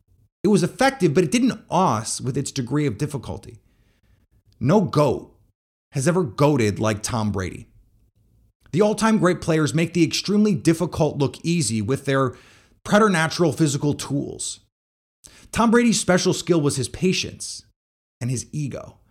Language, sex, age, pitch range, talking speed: English, male, 30-49, 110-175 Hz, 140 wpm